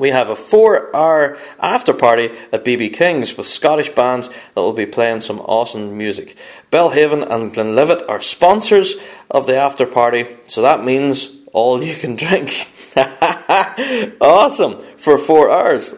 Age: 30-49